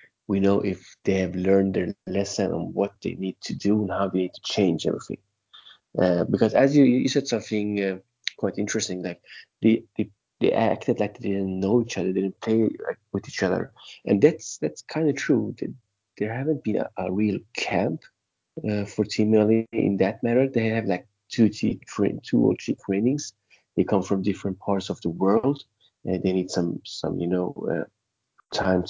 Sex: male